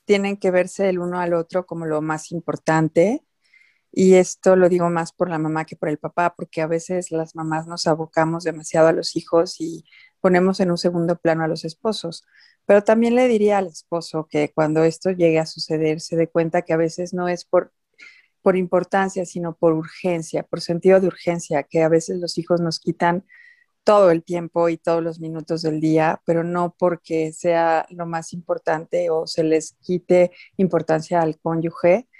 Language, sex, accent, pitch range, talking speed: Spanish, female, Mexican, 160-185 Hz, 190 wpm